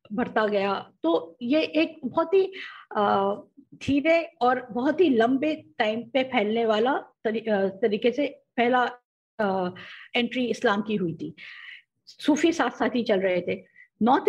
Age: 50-69